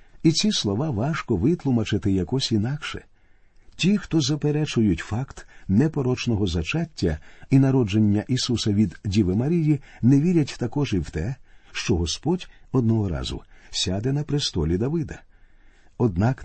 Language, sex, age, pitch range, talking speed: Ukrainian, male, 50-69, 95-135 Hz, 125 wpm